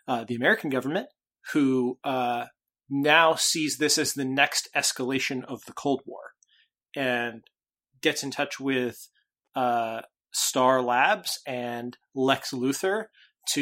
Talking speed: 130 wpm